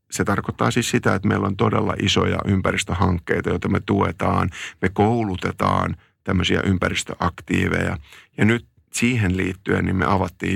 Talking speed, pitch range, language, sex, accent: 135 wpm, 90-105 Hz, Finnish, male, native